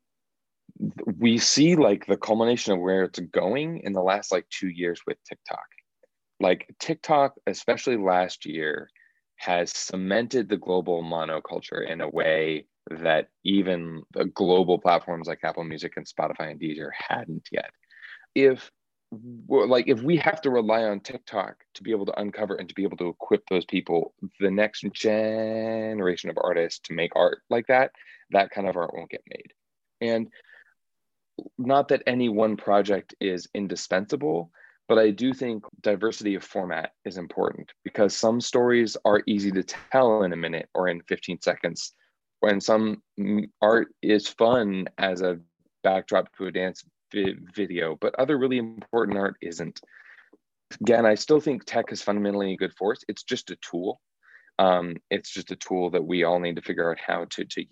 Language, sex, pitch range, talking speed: English, male, 90-115 Hz, 165 wpm